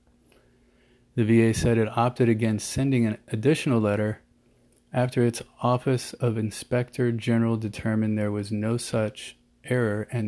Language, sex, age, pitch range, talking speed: English, male, 30-49, 105-120 Hz, 135 wpm